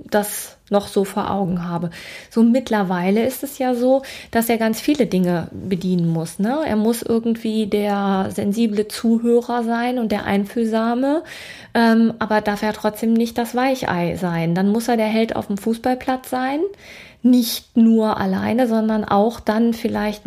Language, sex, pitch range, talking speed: German, female, 215-255 Hz, 165 wpm